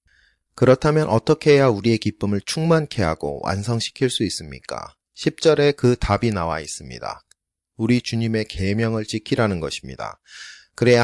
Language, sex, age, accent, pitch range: Korean, male, 30-49, native, 95-125 Hz